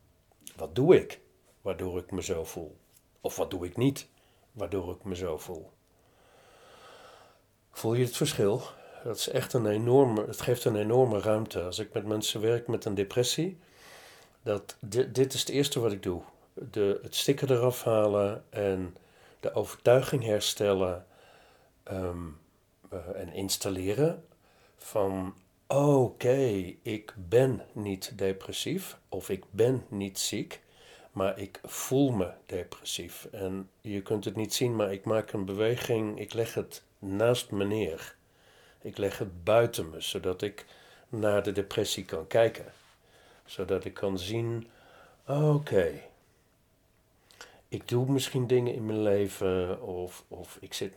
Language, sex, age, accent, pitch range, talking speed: Dutch, male, 50-69, Dutch, 95-125 Hz, 135 wpm